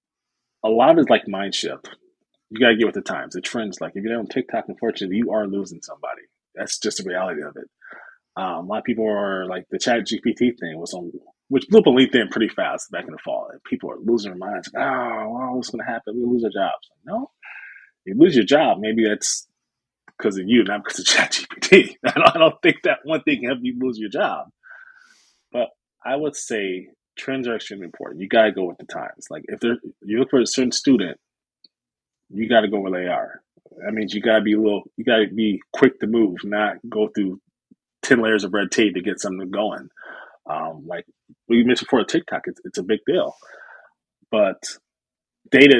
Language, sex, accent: English, male, American